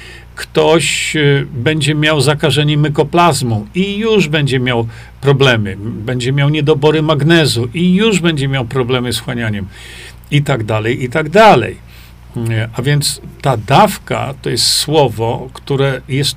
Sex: male